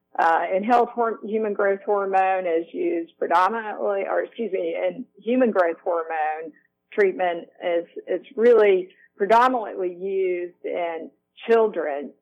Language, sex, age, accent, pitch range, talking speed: English, female, 50-69, American, 170-210 Hz, 120 wpm